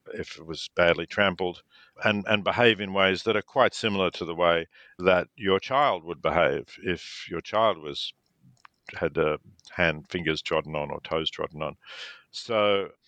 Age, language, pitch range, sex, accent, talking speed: 50-69, English, 85-105 Hz, male, Australian, 170 wpm